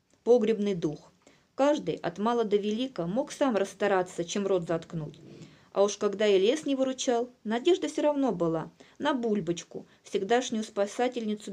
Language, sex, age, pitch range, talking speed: Russian, female, 20-39, 195-250 Hz, 145 wpm